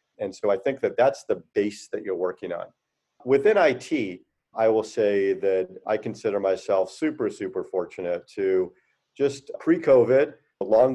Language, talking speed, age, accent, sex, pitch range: English, 160 wpm, 40-59, American, male, 100-140 Hz